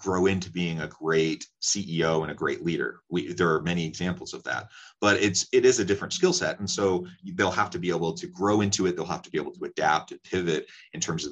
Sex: male